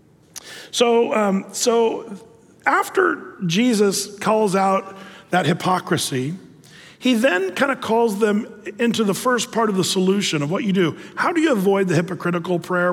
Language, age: English, 40-59